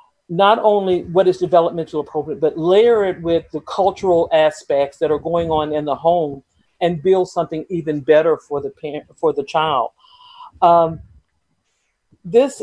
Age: 50-69